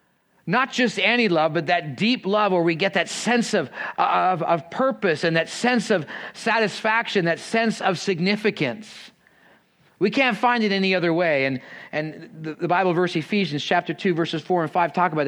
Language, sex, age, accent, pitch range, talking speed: English, male, 40-59, American, 150-195 Hz, 190 wpm